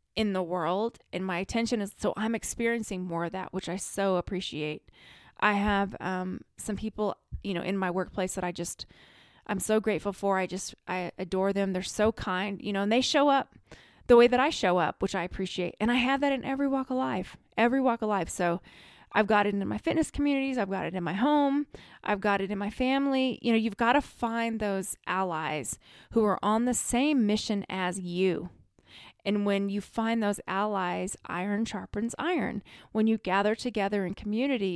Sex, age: female, 20-39